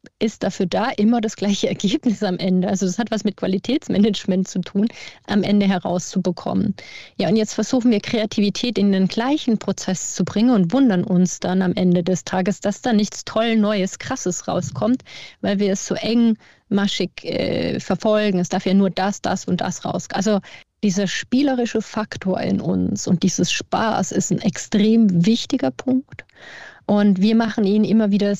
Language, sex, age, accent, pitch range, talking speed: German, female, 30-49, German, 190-215 Hz, 175 wpm